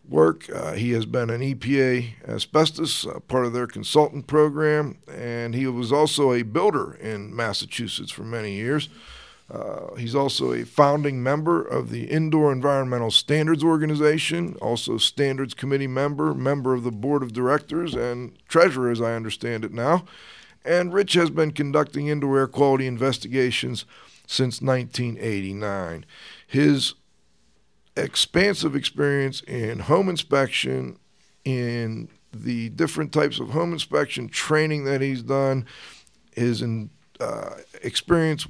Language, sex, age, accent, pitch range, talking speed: English, male, 50-69, American, 120-150 Hz, 130 wpm